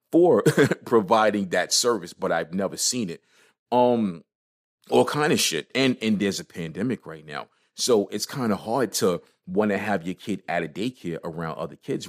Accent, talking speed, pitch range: American, 190 wpm, 95-120 Hz